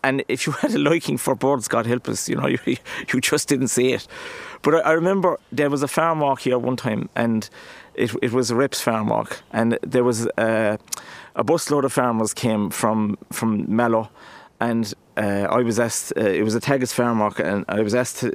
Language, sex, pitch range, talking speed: English, male, 110-135 Hz, 220 wpm